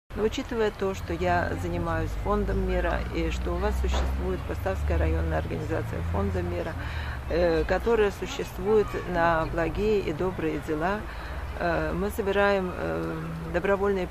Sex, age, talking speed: female, 40-59, 120 wpm